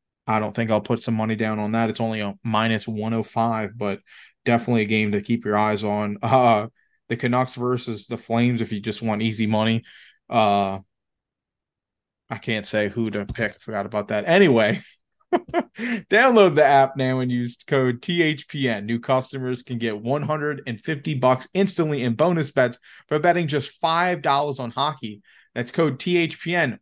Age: 30-49